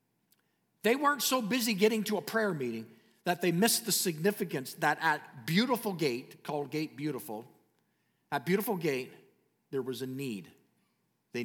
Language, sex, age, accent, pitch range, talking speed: English, male, 50-69, American, 150-215 Hz, 150 wpm